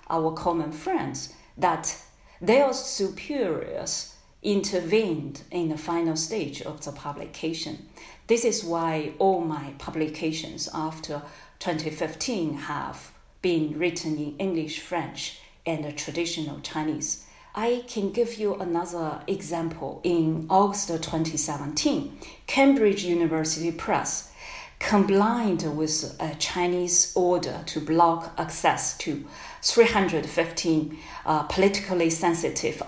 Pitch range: 155-185 Hz